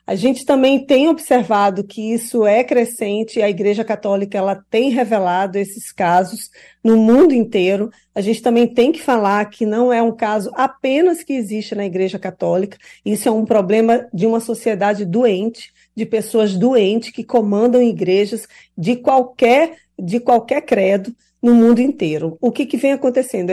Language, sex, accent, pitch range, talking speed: Portuguese, female, Brazilian, 210-250 Hz, 160 wpm